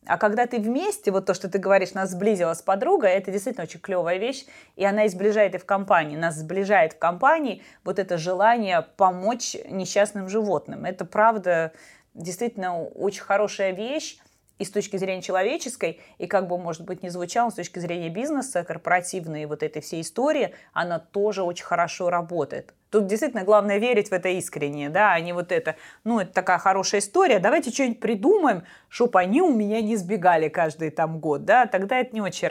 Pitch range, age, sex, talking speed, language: 170-220 Hz, 20-39, female, 185 wpm, Russian